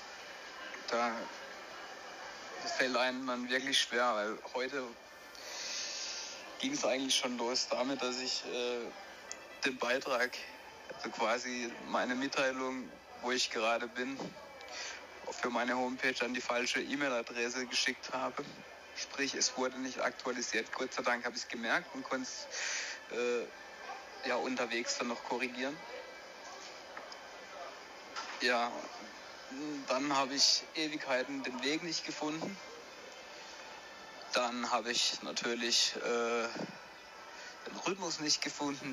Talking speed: 115 wpm